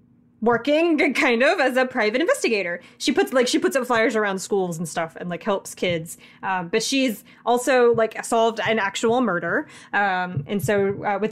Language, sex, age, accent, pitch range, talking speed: English, female, 20-39, American, 200-240 Hz, 190 wpm